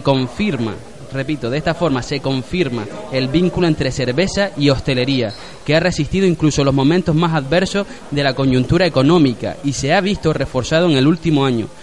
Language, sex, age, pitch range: Spanish, male, 20-39, 130-170 Hz